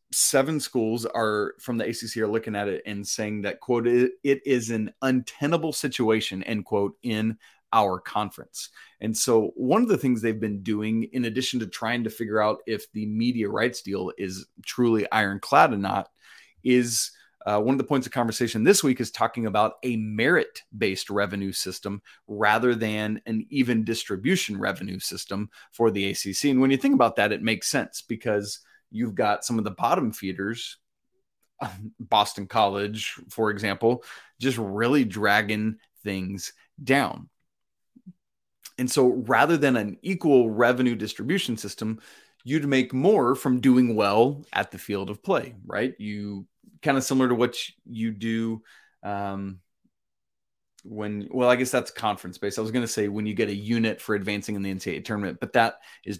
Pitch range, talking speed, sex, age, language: 105-125 Hz, 170 wpm, male, 30-49, English